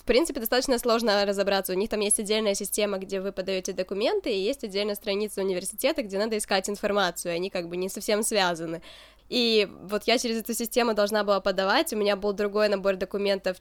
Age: 20-39